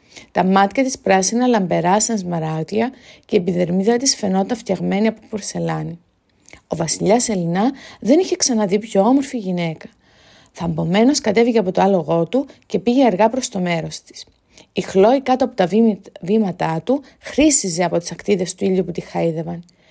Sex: female